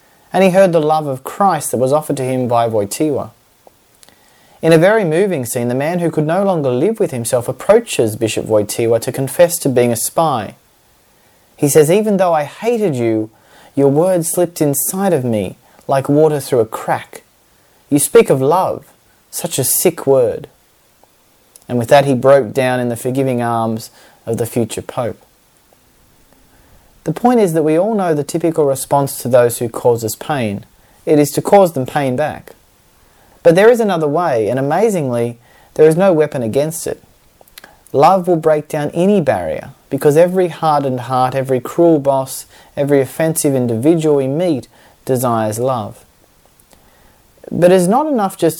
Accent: Australian